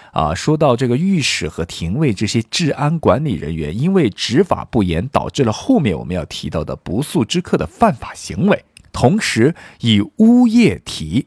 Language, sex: Chinese, male